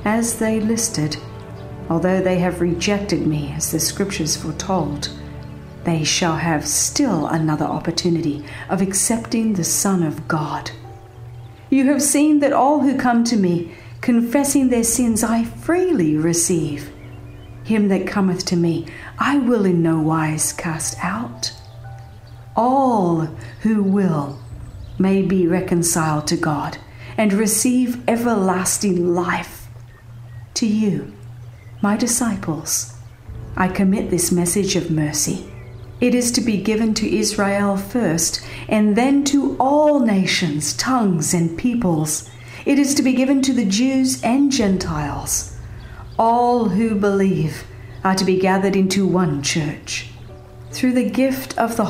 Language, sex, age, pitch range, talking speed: English, female, 50-69, 150-220 Hz, 130 wpm